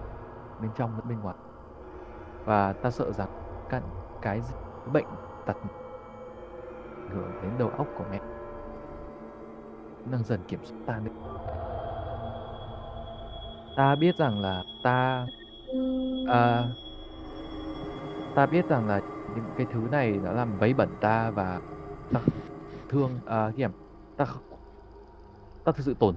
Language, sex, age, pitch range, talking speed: Vietnamese, male, 20-39, 100-125 Hz, 115 wpm